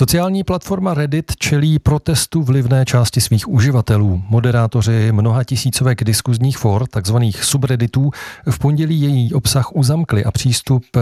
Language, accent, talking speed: Czech, native, 125 wpm